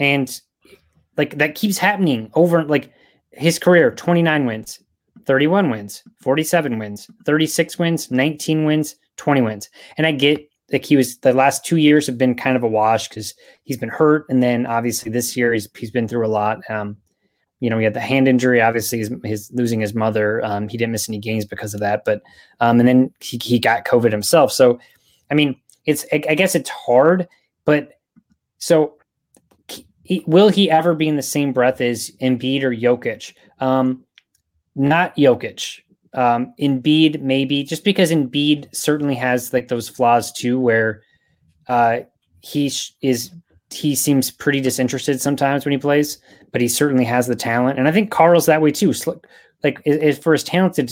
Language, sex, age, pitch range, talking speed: English, male, 20-39, 120-150 Hz, 185 wpm